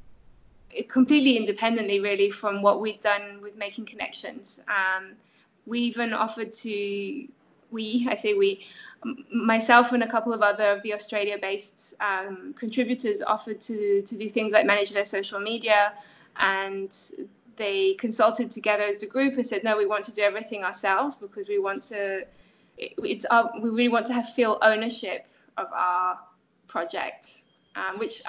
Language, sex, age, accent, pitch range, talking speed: English, female, 20-39, British, 205-245 Hz, 155 wpm